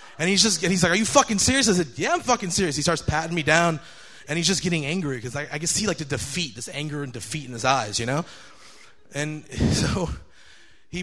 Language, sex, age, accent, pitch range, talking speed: English, male, 30-49, American, 145-195 Hz, 240 wpm